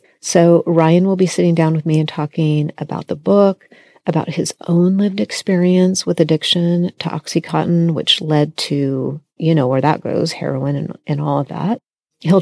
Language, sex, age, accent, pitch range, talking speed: English, female, 40-59, American, 150-180 Hz, 180 wpm